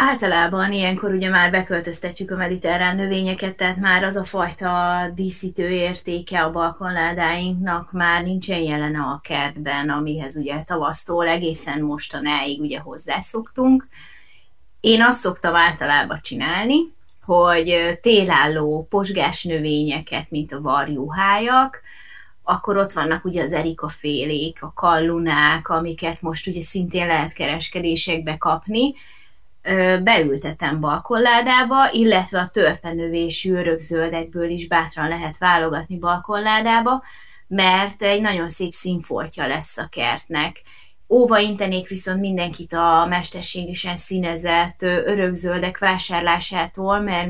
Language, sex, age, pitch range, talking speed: Hungarian, female, 20-39, 165-190 Hz, 110 wpm